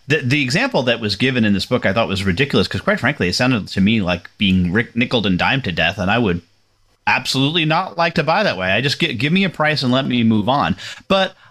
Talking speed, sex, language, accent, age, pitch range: 260 wpm, male, English, American, 30-49, 105-135 Hz